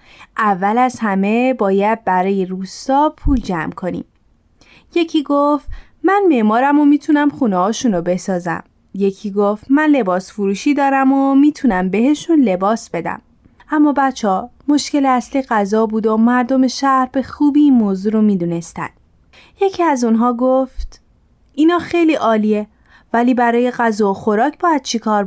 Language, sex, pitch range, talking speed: Persian, female, 200-280 Hz, 140 wpm